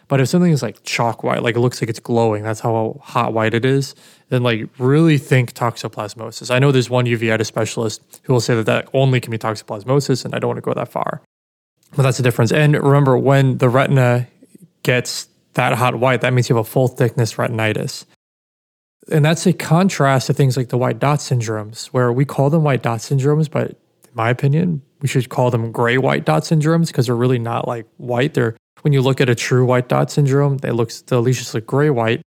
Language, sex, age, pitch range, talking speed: English, male, 20-39, 120-140 Hz, 220 wpm